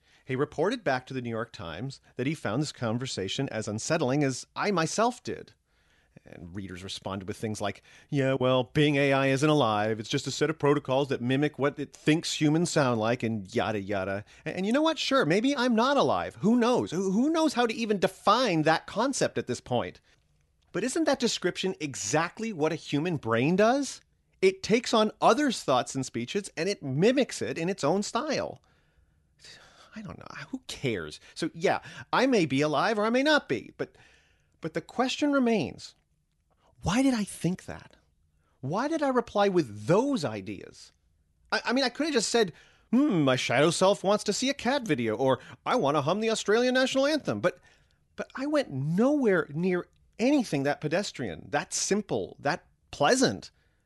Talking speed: 185 wpm